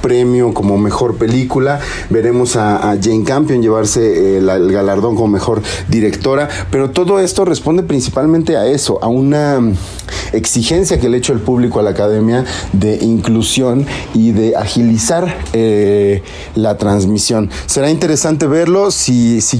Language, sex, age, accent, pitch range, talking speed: Spanish, male, 40-59, Mexican, 110-135 Hz, 145 wpm